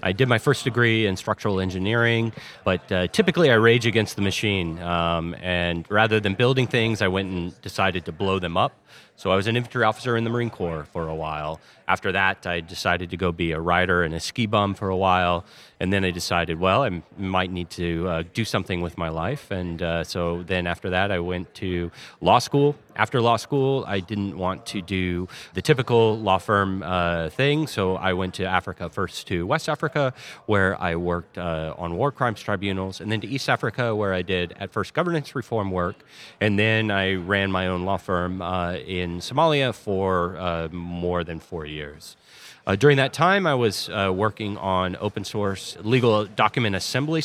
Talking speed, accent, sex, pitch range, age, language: 205 wpm, American, male, 90-115 Hz, 30-49, English